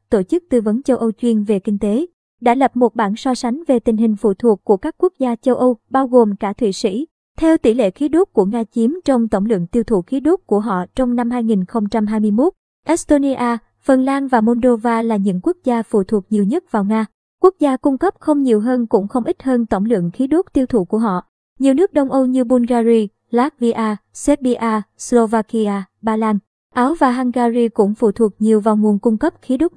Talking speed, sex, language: 220 wpm, male, Vietnamese